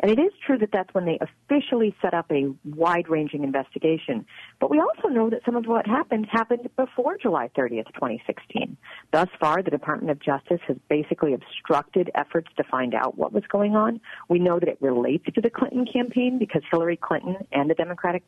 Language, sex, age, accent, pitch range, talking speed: English, female, 40-59, American, 155-225 Hz, 195 wpm